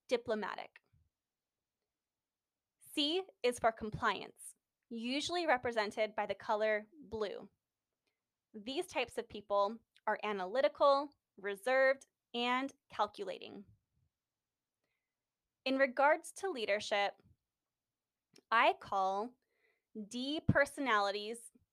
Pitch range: 215-275 Hz